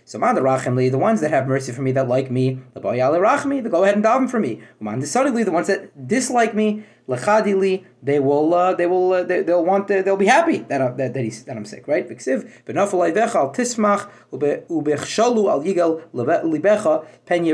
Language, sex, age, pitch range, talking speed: English, male, 30-49, 150-205 Hz, 120 wpm